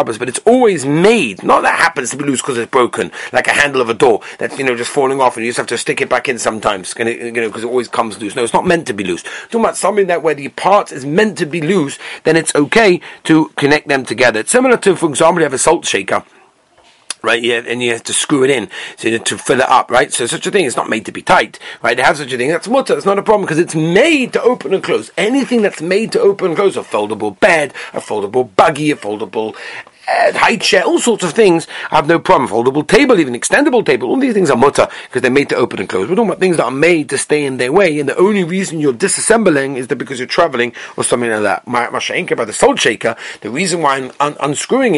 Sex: male